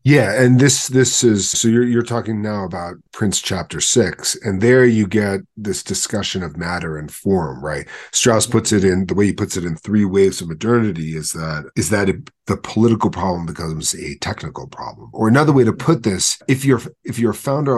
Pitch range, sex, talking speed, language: 95-120 Hz, male, 215 wpm, English